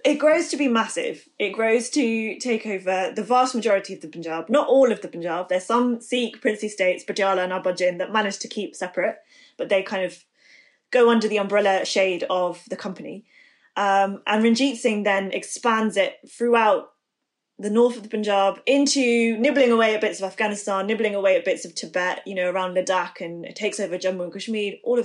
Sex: female